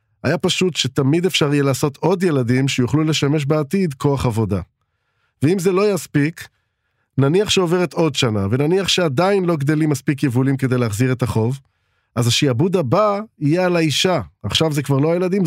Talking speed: 165 wpm